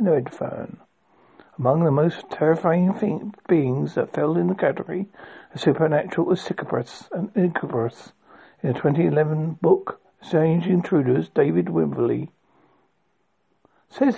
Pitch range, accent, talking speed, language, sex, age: 150-195 Hz, British, 115 wpm, English, male, 60-79